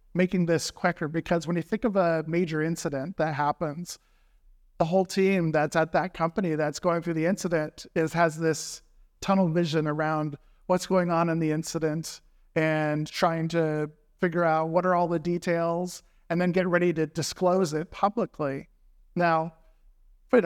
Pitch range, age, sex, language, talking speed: 160-180 Hz, 50-69, male, English, 165 wpm